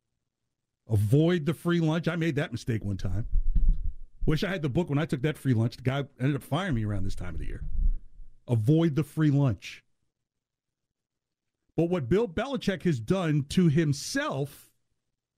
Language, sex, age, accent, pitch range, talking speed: English, male, 50-69, American, 125-185 Hz, 175 wpm